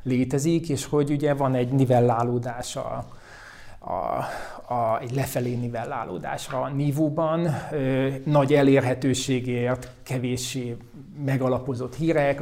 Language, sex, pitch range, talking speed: Hungarian, male, 125-140 Hz, 95 wpm